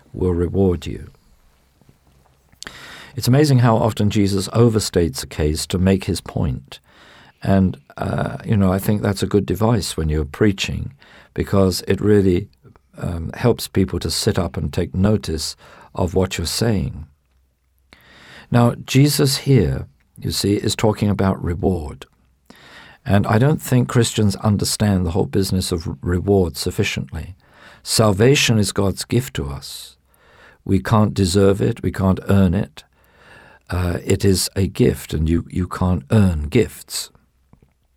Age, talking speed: 50-69, 140 wpm